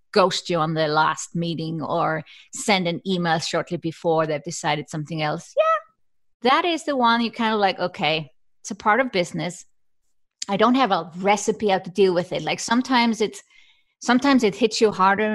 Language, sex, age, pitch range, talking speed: English, female, 30-49, 175-225 Hz, 190 wpm